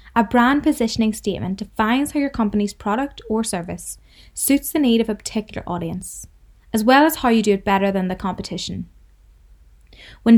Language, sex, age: English, female, 20-39